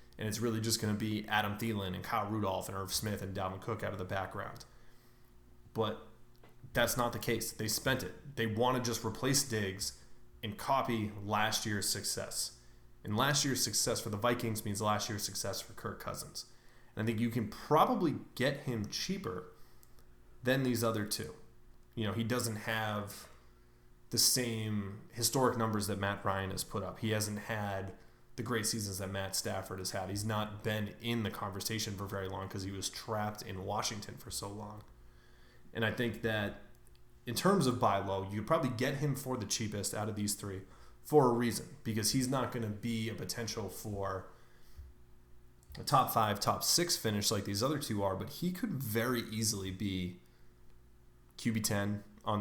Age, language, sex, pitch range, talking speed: 20-39, English, male, 95-115 Hz, 190 wpm